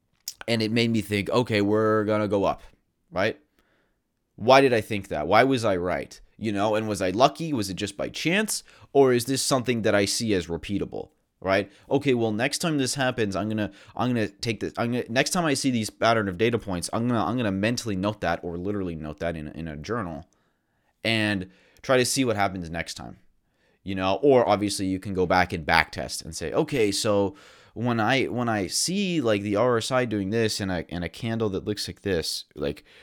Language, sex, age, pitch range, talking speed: English, male, 30-49, 95-125 Hz, 230 wpm